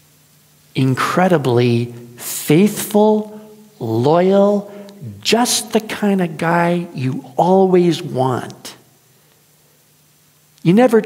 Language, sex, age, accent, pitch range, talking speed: English, male, 50-69, American, 145-200 Hz, 70 wpm